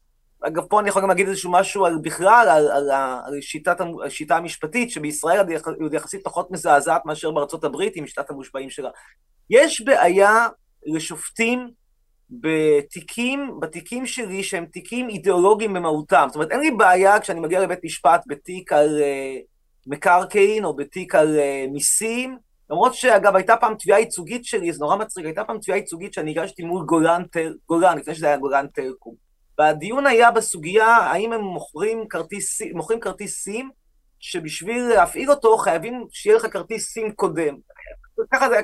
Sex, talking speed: male, 155 wpm